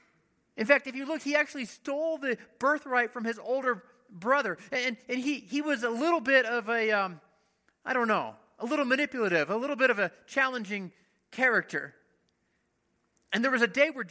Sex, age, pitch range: male, 30-49, 215-260 Hz